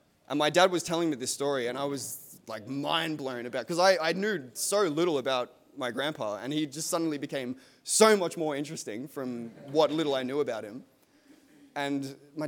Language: English